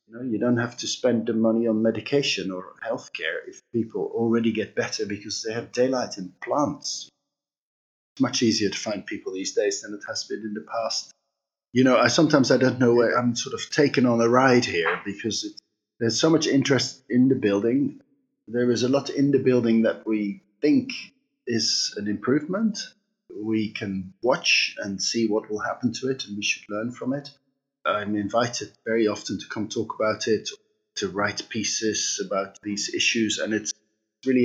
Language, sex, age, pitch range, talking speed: English, male, 30-49, 105-140 Hz, 190 wpm